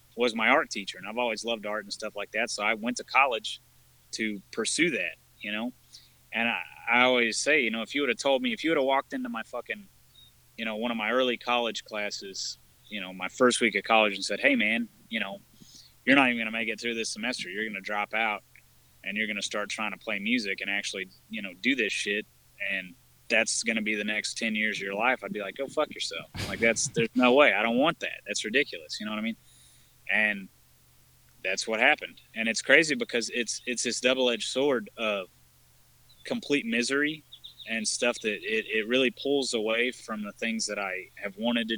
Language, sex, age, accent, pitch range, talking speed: English, male, 30-49, American, 105-125 Hz, 235 wpm